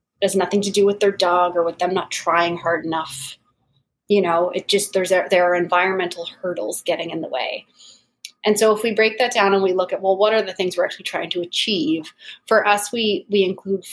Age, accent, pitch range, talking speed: 30-49, American, 175-205 Hz, 230 wpm